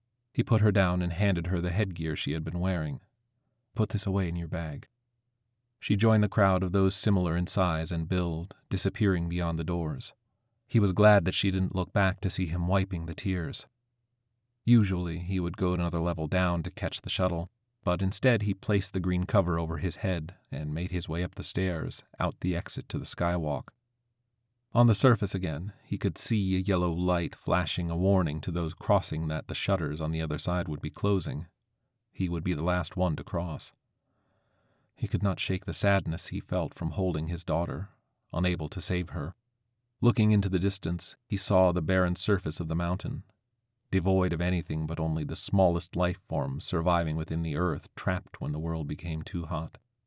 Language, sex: English, male